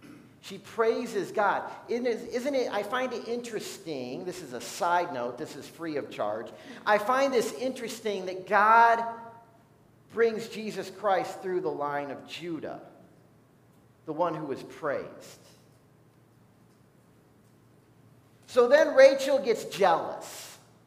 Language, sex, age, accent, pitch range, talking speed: English, male, 50-69, American, 190-250 Hz, 130 wpm